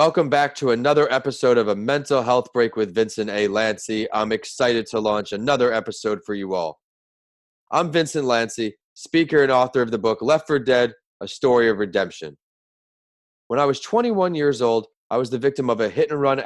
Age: 30-49